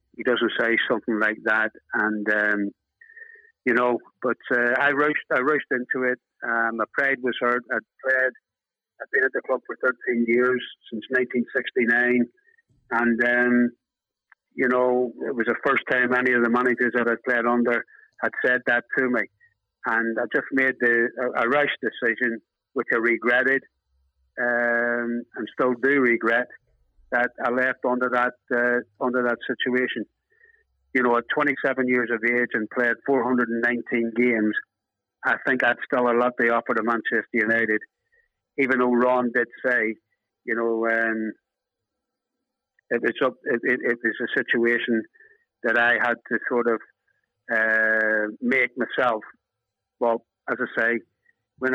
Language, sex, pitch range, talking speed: Finnish, male, 115-125 Hz, 155 wpm